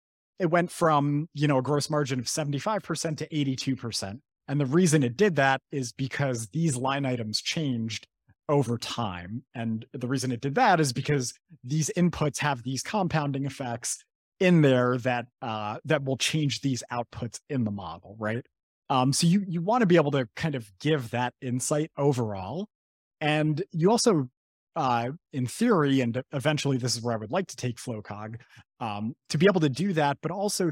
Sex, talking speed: male, 185 wpm